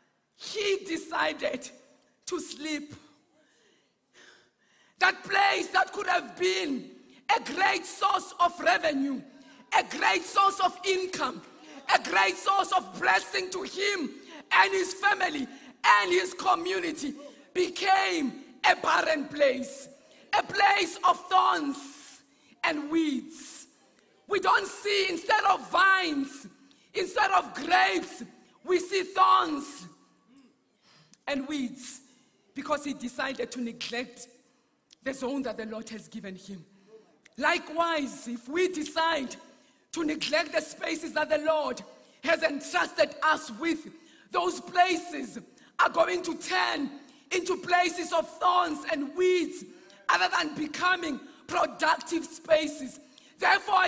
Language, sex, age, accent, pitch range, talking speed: English, female, 50-69, South African, 275-360 Hz, 115 wpm